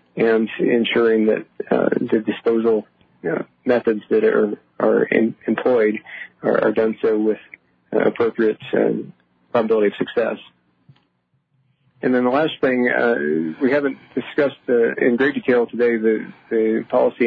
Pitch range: 110-120 Hz